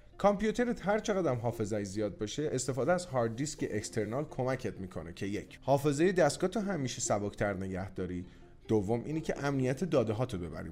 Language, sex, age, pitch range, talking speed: Persian, male, 30-49, 110-150 Hz, 170 wpm